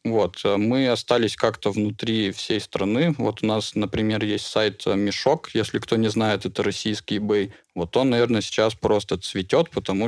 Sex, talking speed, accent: male, 165 wpm, native